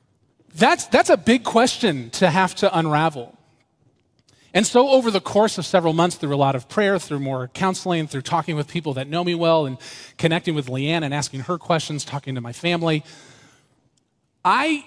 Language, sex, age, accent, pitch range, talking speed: English, male, 30-49, American, 130-175 Hz, 185 wpm